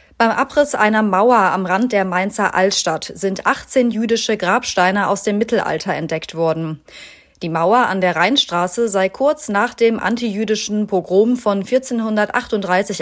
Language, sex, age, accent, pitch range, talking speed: German, female, 30-49, German, 185-230 Hz, 145 wpm